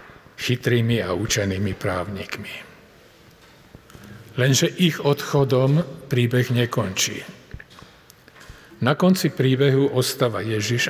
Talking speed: 75 wpm